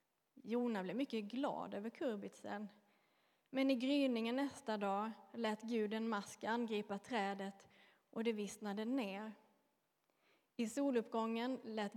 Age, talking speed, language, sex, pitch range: 30-49, 115 wpm, Swedish, female, 205-245 Hz